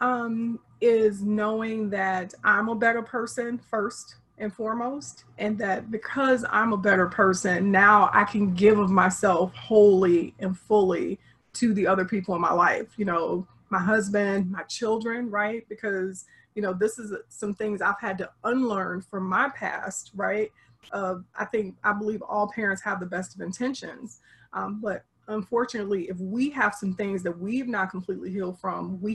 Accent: American